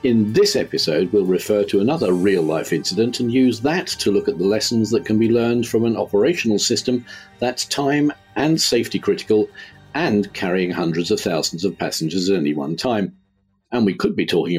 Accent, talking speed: British, 190 wpm